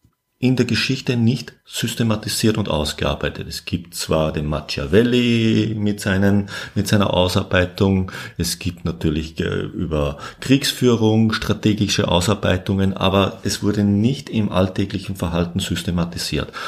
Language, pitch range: German, 85-110 Hz